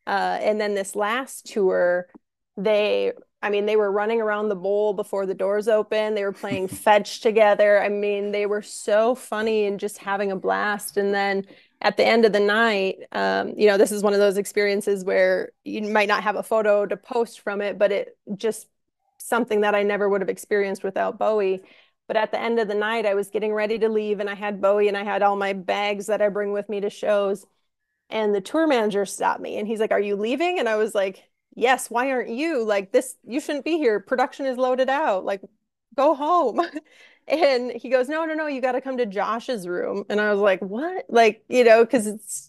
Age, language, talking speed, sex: 20-39, English, 225 wpm, female